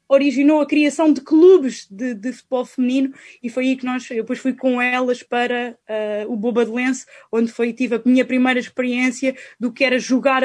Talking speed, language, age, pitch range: 205 wpm, Portuguese, 20-39, 235-290 Hz